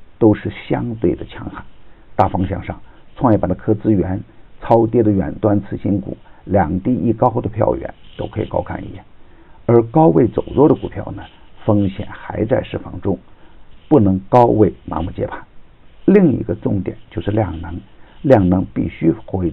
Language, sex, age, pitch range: Chinese, male, 50-69, 95-110 Hz